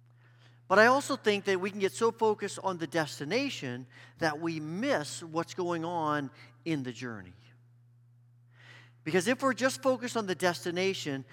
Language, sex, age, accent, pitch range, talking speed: English, male, 40-59, American, 120-185 Hz, 160 wpm